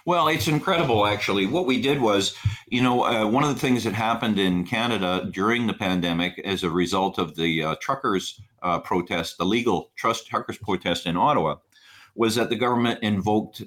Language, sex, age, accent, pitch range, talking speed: English, male, 50-69, American, 95-125 Hz, 190 wpm